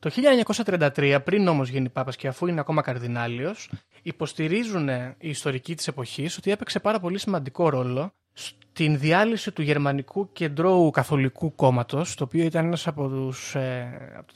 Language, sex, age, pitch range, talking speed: Greek, male, 30-49, 135-190 Hz, 150 wpm